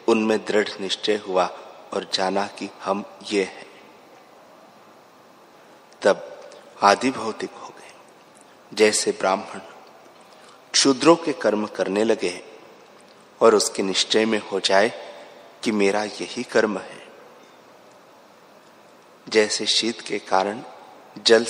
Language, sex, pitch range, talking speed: Hindi, male, 95-115 Hz, 105 wpm